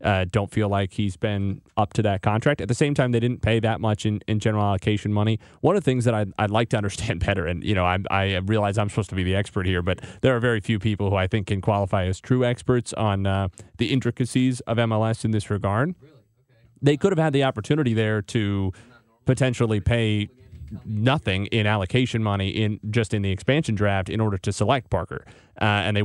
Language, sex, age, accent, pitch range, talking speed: English, male, 30-49, American, 105-125 Hz, 230 wpm